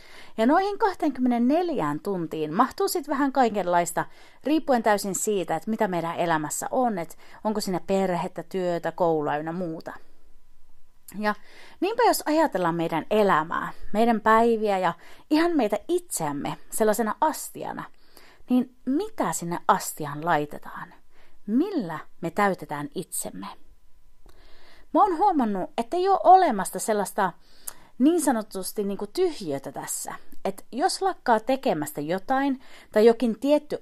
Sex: female